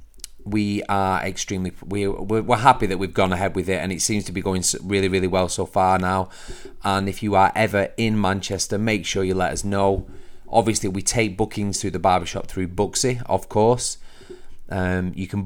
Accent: British